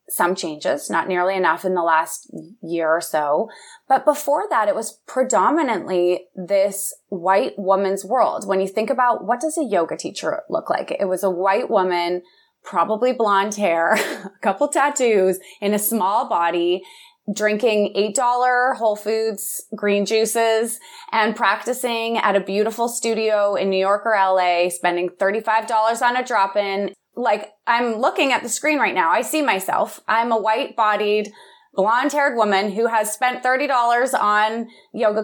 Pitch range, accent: 190-240 Hz, American